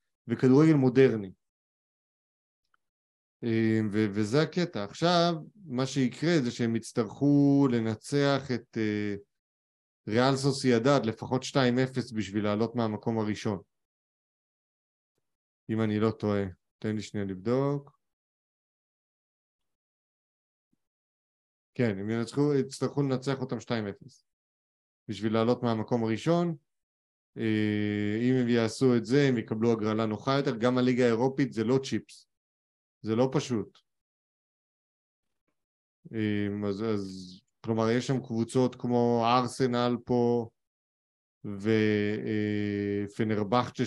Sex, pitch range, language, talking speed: male, 105-125 Hz, Hebrew, 95 wpm